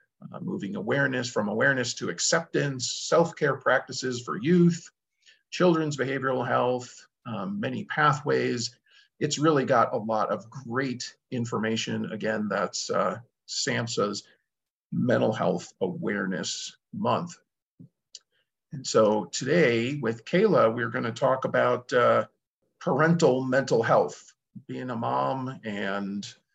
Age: 50-69